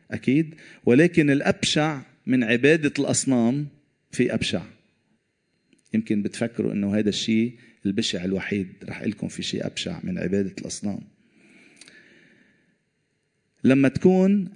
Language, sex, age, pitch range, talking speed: Arabic, male, 40-59, 100-130 Hz, 105 wpm